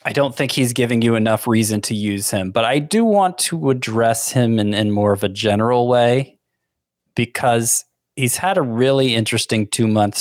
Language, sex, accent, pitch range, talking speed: English, male, American, 105-130 Hz, 190 wpm